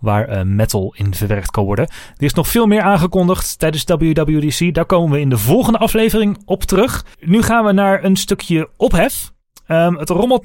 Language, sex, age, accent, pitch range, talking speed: Dutch, male, 30-49, Dutch, 115-160 Hz, 195 wpm